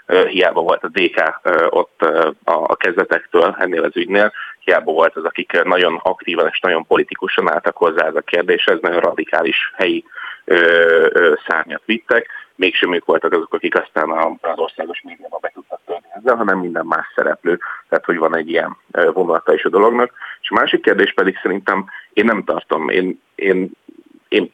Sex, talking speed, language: male, 165 wpm, Hungarian